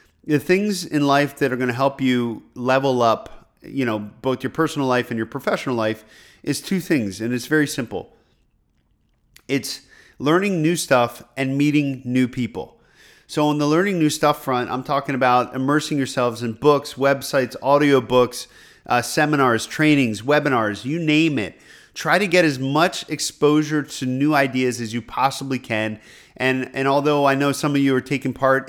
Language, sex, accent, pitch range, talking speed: English, male, American, 125-150 Hz, 175 wpm